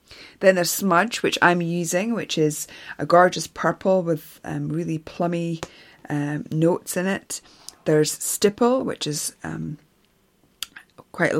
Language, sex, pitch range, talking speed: English, female, 155-195 Hz, 130 wpm